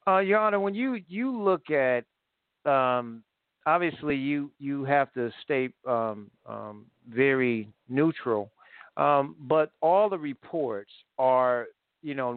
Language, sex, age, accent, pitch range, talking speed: English, male, 50-69, American, 125-155 Hz, 130 wpm